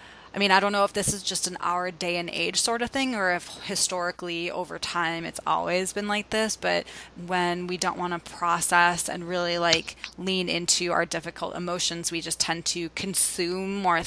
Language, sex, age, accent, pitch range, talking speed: English, female, 20-39, American, 165-190 Hz, 205 wpm